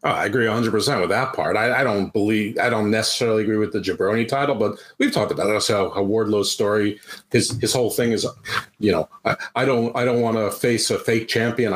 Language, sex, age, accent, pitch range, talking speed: English, male, 40-59, American, 105-120 Hz, 235 wpm